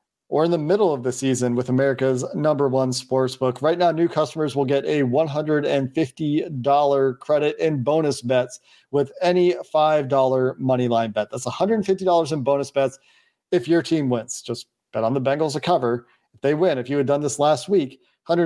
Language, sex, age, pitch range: English, male, 40-59, 130-160 Hz